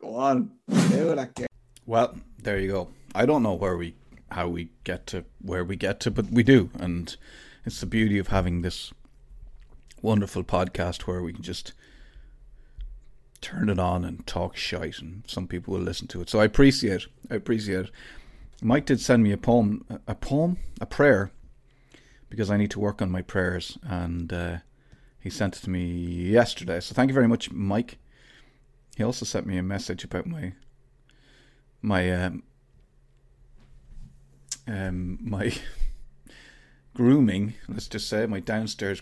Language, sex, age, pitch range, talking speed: English, male, 30-49, 90-125 Hz, 160 wpm